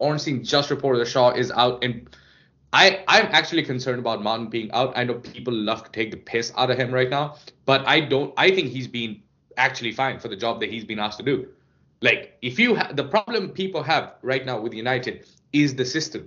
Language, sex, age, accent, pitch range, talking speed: English, male, 20-39, Indian, 125-165 Hz, 230 wpm